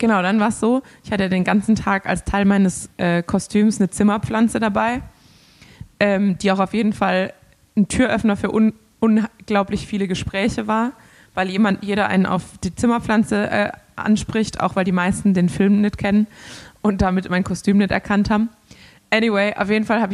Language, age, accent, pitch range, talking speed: German, 20-39, German, 190-215 Hz, 180 wpm